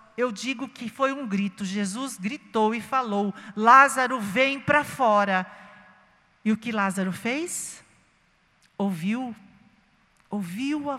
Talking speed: 120 wpm